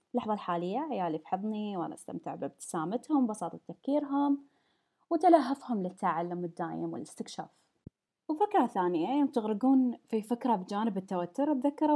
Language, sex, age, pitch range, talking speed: Arabic, female, 20-39, 185-275 Hz, 110 wpm